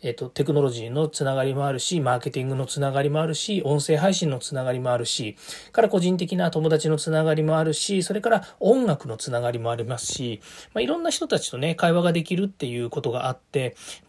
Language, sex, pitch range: Japanese, male, 130-190 Hz